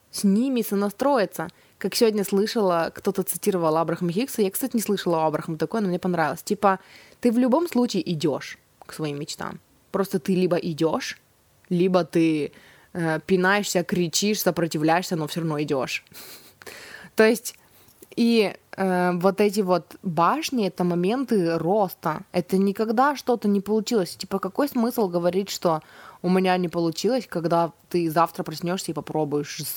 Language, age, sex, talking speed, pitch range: Russian, 20-39, female, 145 wpm, 165-200 Hz